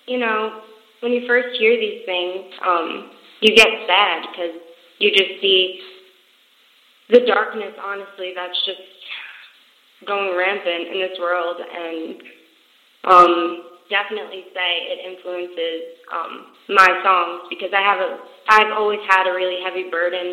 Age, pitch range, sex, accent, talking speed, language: 20-39, 175-205 Hz, female, American, 135 wpm, English